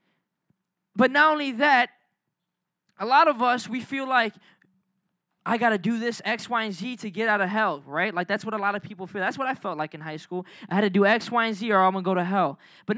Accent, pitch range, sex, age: American, 185-250 Hz, male, 10-29